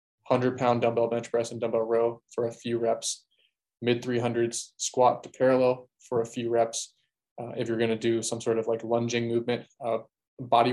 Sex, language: male, English